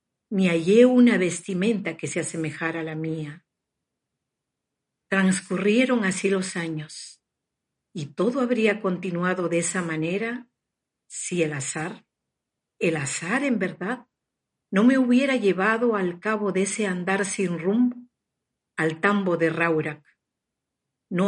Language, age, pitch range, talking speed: Spanish, 50-69, 165-225 Hz, 125 wpm